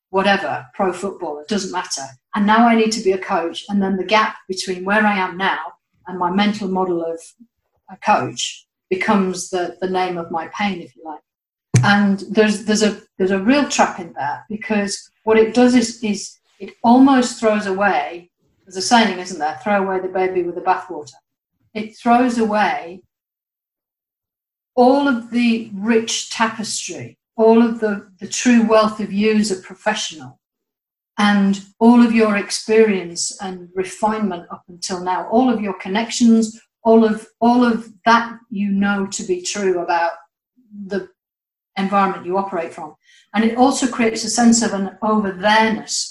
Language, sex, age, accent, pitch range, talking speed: English, female, 50-69, British, 185-225 Hz, 170 wpm